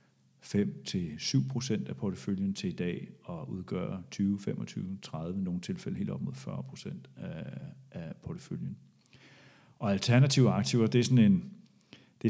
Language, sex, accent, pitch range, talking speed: Danish, male, native, 95-135 Hz, 125 wpm